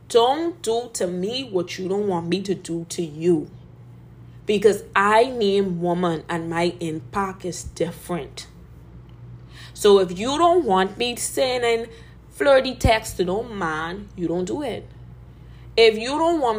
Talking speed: 150 wpm